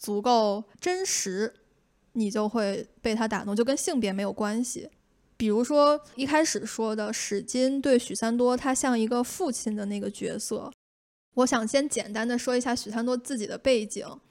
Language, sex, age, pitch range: Chinese, female, 10-29, 220-255 Hz